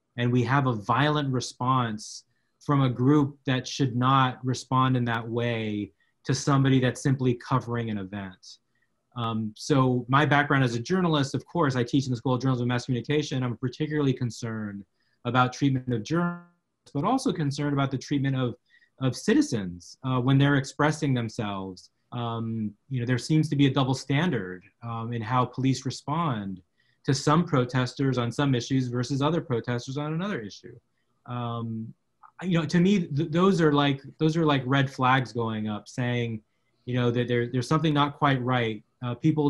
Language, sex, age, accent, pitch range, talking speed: English, male, 30-49, American, 120-140 Hz, 180 wpm